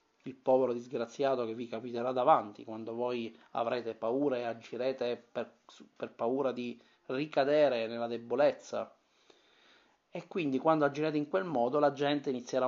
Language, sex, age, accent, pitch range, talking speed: Italian, male, 30-49, native, 120-150 Hz, 140 wpm